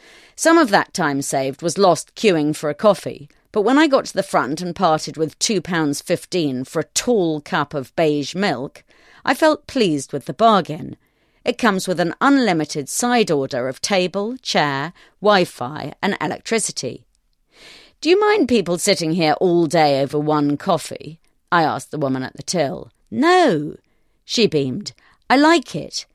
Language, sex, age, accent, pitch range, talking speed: English, female, 40-59, British, 155-230 Hz, 165 wpm